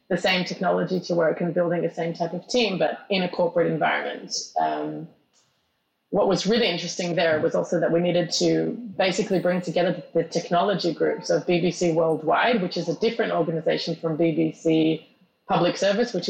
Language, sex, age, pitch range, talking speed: English, female, 30-49, 165-190 Hz, 175 wpm